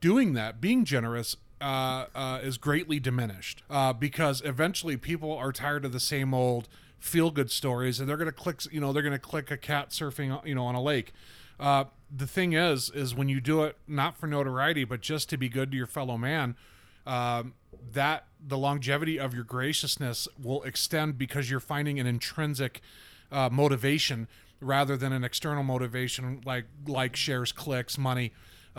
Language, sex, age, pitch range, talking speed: English, male, 30-49, 125-150 Hz, 180 wpm